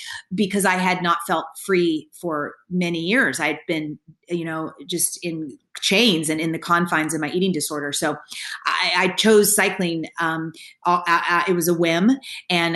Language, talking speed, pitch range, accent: English, 185 wpm, 155-180 Hz, American